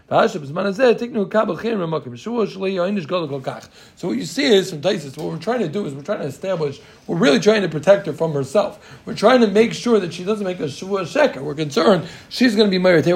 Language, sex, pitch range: English, male, 155-210 Hz